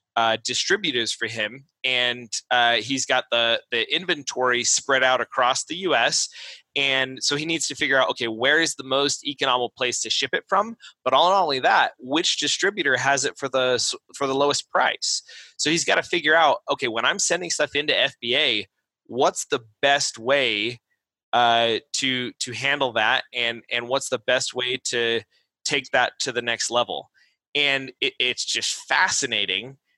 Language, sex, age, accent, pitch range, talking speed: English, male, 20-39, American, 120-145 Hz, 175 wpm